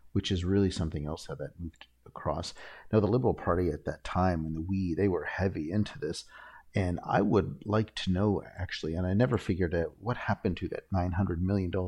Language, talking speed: English, 205 wpm